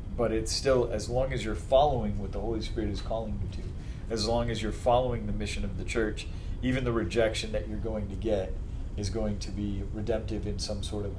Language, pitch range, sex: English, 95-110 Hz, male